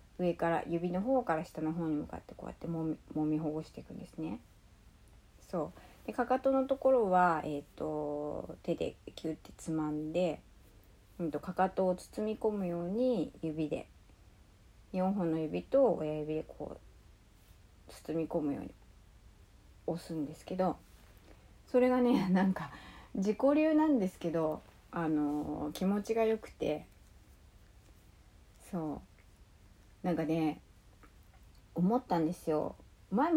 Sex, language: female, Japanese